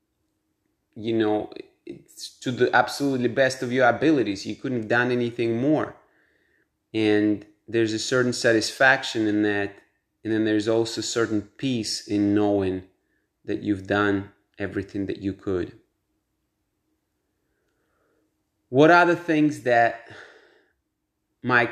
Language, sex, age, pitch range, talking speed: English, male, 30-49, 105-130 Hz, 120 wpm